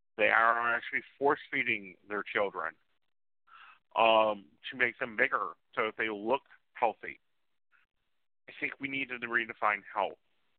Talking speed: 130 wpm